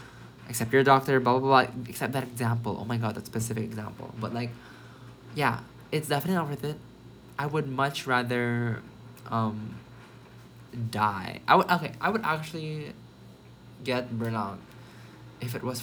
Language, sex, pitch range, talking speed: English, male, 120-150 Hz, 160 wpm